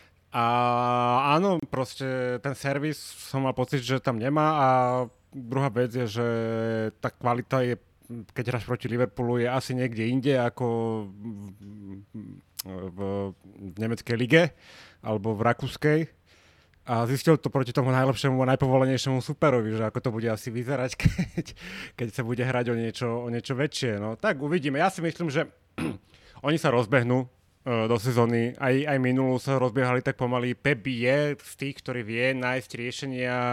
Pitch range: 115-140 Hz